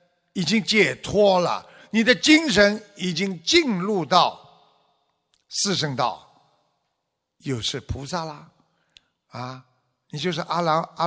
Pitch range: 155-230 Hz